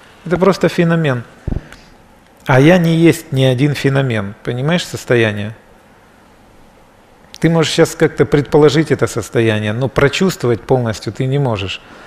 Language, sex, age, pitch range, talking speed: Russian, male, 40-59, 120-155 Hz, 125 wpm